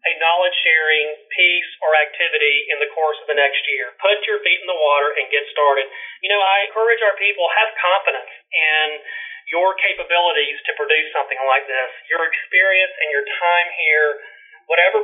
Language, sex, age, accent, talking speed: English, male, 40-59, American, 180 wpm